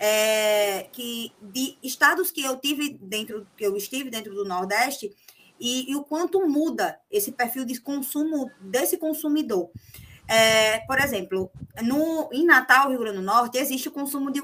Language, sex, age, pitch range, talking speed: Portuguese, female, 20-39, 215-295 Hz, 160 wpm